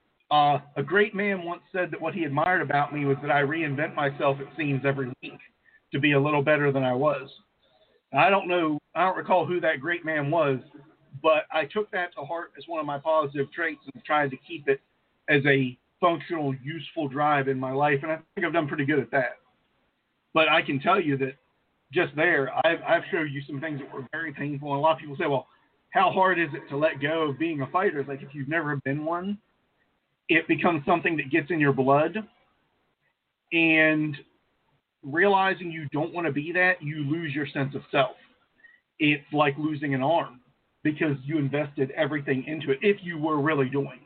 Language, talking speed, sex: English, 210 wpm, male